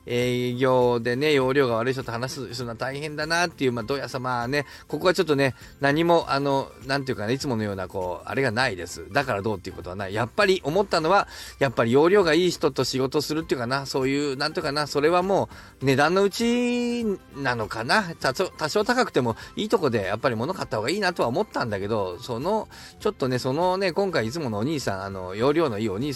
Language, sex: Japanese, male